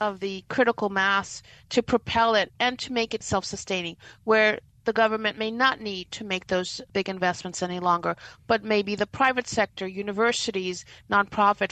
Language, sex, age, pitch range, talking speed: English, female, 50-69, 195-235 Hz, 165 wpm